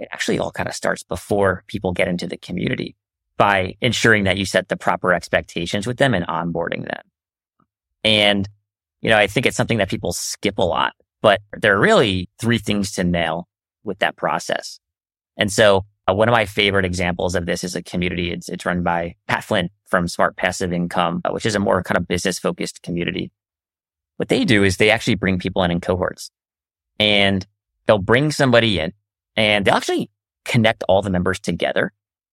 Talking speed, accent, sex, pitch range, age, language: 190 wpm, American, male, 90-110 Hz, 30-49, English